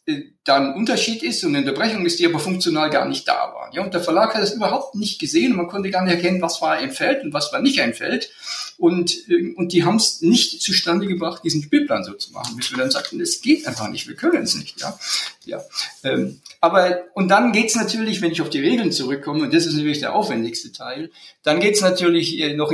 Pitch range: 135-200 Hz